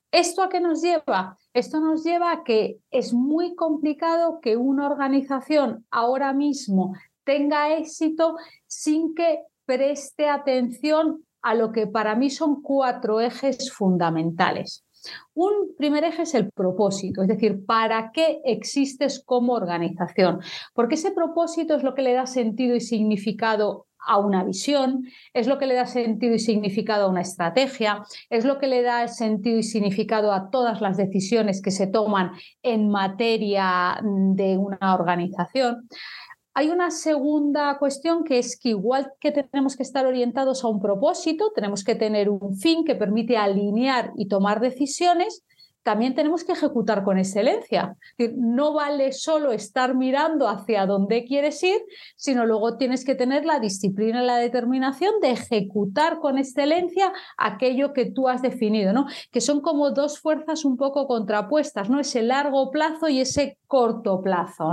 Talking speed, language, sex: 155 wpm, Spanish, female